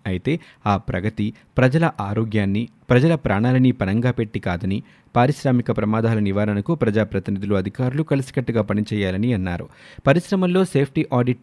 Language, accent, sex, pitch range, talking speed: Telugu, native, male, 105-130 Hz, 110 wpm